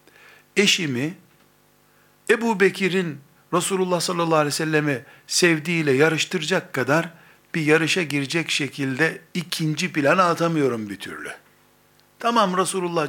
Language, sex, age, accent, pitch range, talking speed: Turkish, male, 60-79, native, 135-175 Hz, 100 wpm